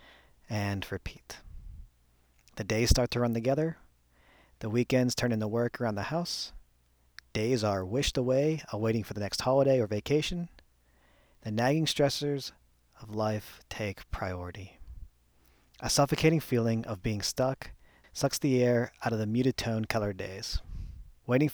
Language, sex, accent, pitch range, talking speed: English, male, American, 85-125 Hz, 140 wpm